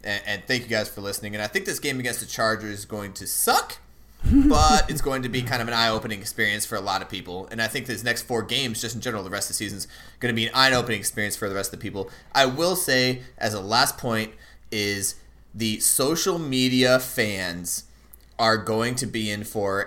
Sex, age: male, 30-49